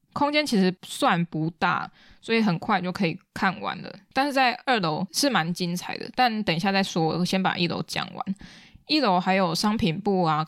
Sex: female